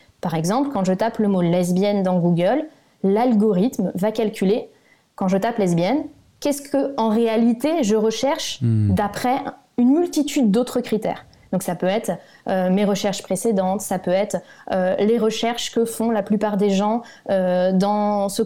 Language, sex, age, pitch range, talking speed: French, female, 20-39, 190-245 Hz, 175 wpm